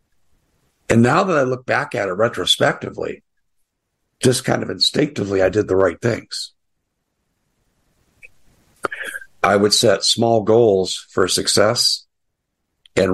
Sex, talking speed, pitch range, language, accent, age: male, 120 wpm, 95-135 Hz, English, American, 60-79